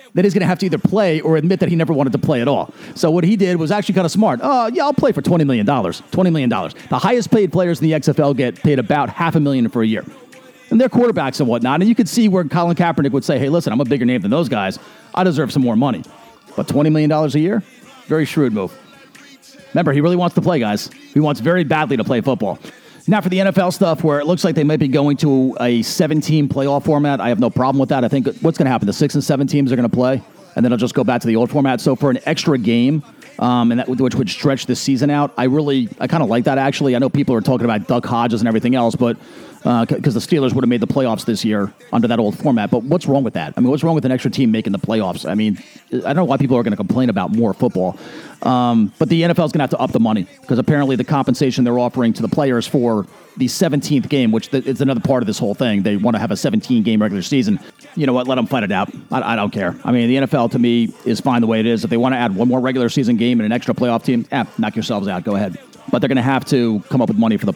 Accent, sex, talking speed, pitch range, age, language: American, male, 290 wpm, 125-170 Hz, 40-59, English